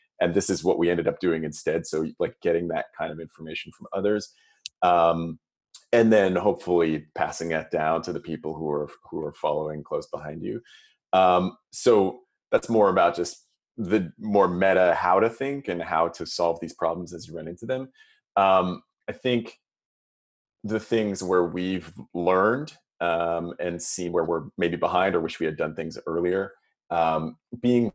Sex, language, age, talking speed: male, English, 30-49, 180 wpm